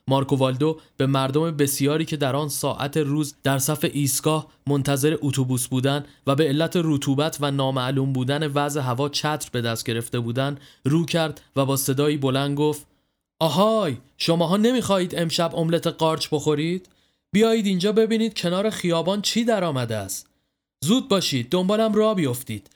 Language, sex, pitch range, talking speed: Persian, male, 135-170 Hz, 150 wpm